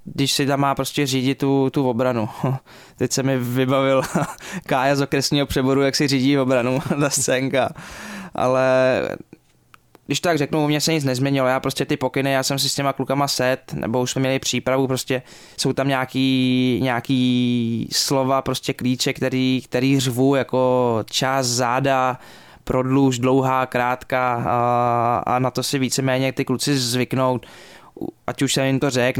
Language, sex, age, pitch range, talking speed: Czech, male, 20-39, 120-135 Hz, 165 wpm